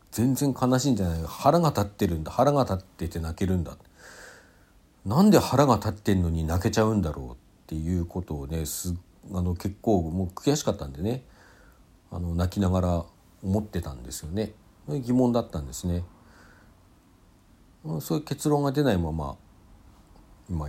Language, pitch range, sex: Japanese, 85-105 Hz, male